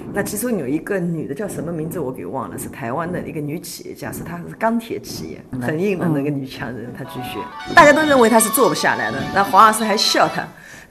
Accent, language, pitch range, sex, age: native, Chinese, 140-200 Hz, female, 30-49